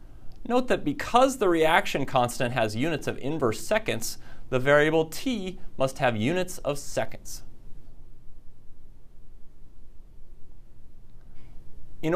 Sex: male